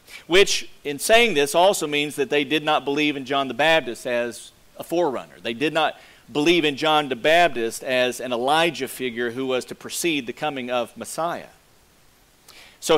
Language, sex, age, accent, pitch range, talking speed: English, male, 40-59, American, 125-160 Hz, 180 wpm